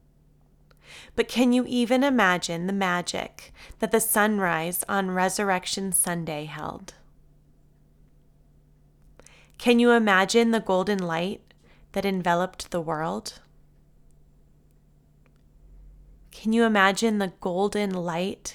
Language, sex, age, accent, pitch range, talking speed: English, female, 20-39, American, 170-225 Hz, 95 wpm